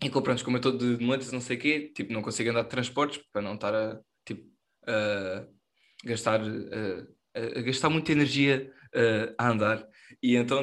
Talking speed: 200 wpm